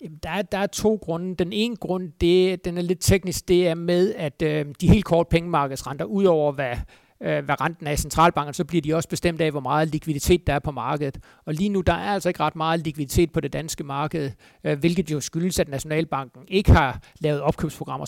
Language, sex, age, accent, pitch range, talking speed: Danish, male, 60-79, native, 150-175 Hz, 210 wpm